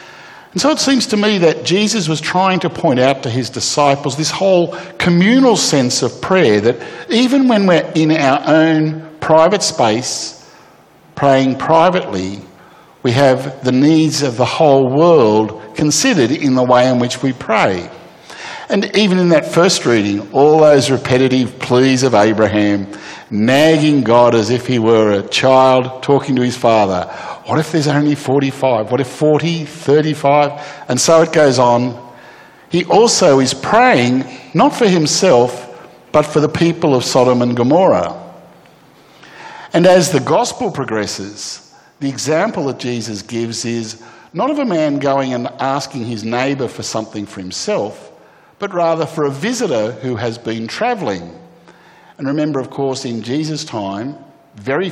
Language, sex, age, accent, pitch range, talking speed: English, male, 50-69, Australian, 125-160 Hz, 155 wpm